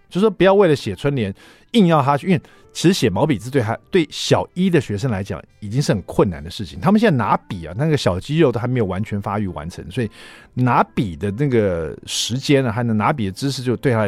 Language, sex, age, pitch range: Chinese, male, 50-69, 100-145 Hz